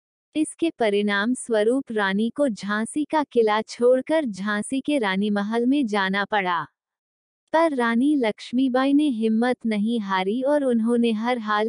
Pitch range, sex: 210-265 Hz, female